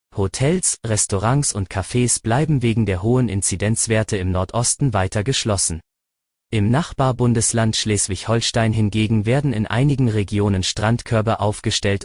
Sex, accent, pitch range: male, German, 100-120 Hz